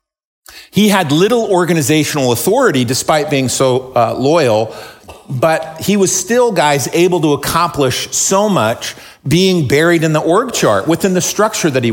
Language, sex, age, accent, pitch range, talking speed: English, male, 50-69, American, 130-180 Hz, 155 wpm